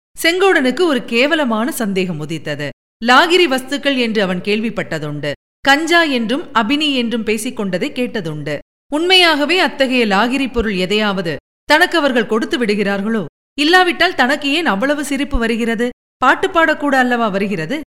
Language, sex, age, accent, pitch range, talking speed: Tamil, female, 50-69, native, 225-295 Hz, 110 wpm